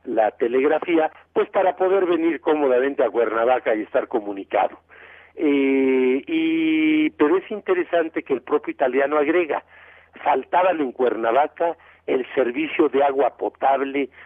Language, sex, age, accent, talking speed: Spanish, male, 50-69, Mexican, 125 wpm